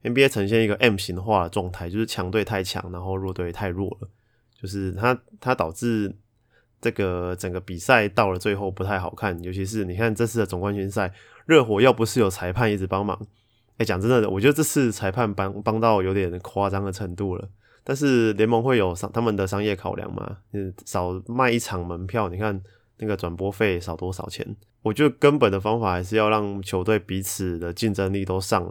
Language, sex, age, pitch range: Chinese, male, 20-39, 95-115 Hz